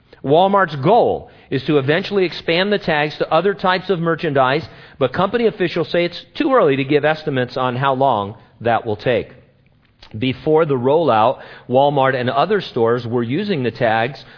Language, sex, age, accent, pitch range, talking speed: English, male, 40-59, American, 125-170 Hz, 165 wpm